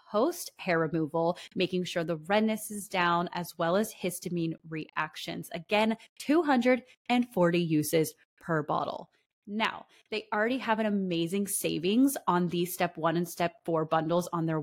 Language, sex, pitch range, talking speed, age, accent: English, female, 170-220 Hz, 150 wpm, 20-39, American